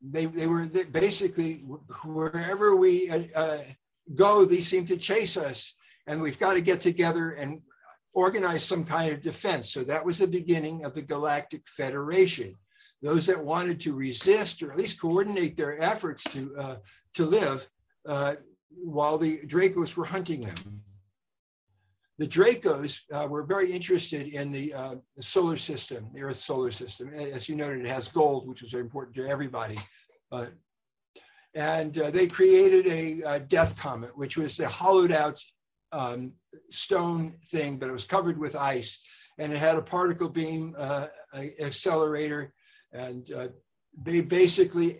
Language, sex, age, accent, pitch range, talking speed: English, male, 60-79, American, 140-175 Hz, 160 wpm